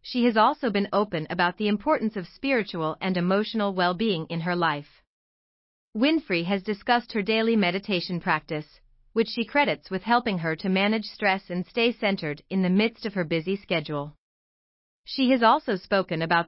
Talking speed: 170 wpm